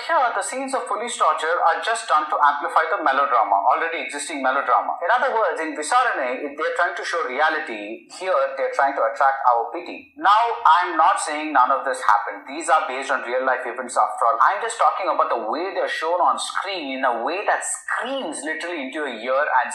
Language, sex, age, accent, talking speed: Tamil, male, 30-49, native, 220 wpm